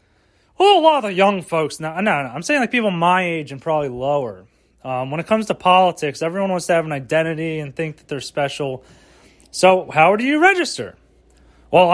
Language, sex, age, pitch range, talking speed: English, male, 30-49, 155-225 Hz, 205 wpm